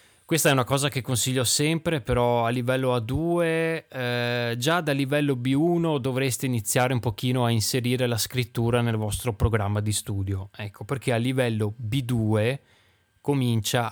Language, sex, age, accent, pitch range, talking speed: Italian, male, 20-39, native, 110-135 Hz, 150 wpm